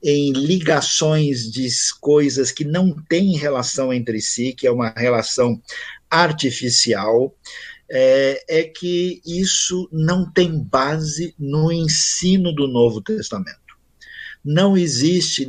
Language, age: Portuguese, 50-69